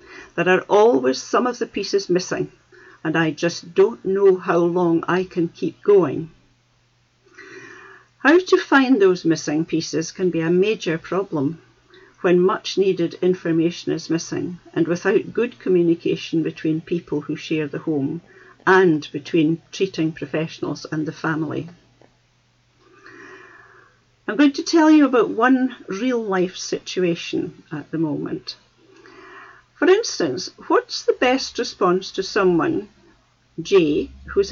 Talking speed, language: 130 wpm, English